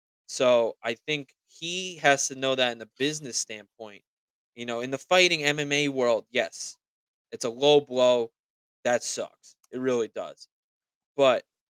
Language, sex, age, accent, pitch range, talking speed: English, male, 20-39, American, 120-145 Hz, 155 wpm